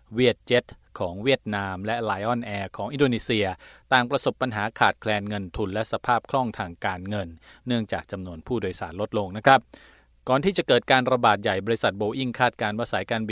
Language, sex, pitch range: Thai, male, 100-120 Hz